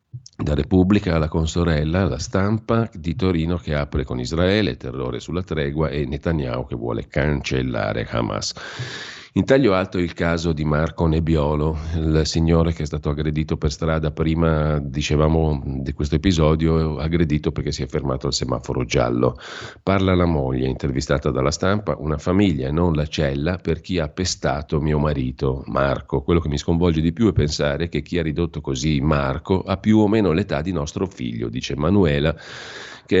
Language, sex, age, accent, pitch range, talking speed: Italian, male, 40-59, native, 75-85 Hz, 170 wpm